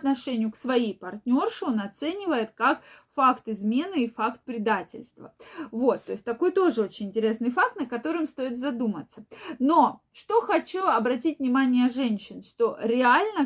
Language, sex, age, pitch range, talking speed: Russian, female, 20-39, 240-315 Hz, 145 wpm